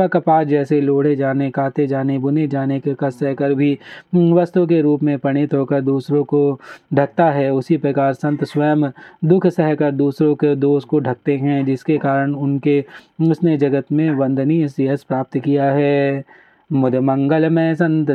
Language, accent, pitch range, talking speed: Hindi, native, 140-160 Hz, 150 wpm